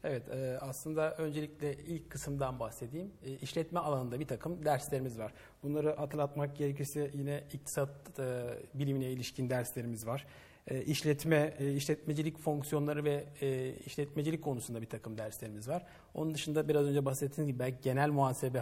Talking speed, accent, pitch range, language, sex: 125 wpm, native, 140-170 Hz, Turkish, male